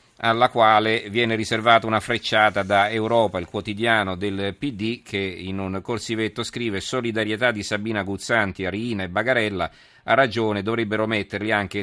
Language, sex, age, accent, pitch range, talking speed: Italian, male, 40-59, native, 95-110 Hz, 145 wpm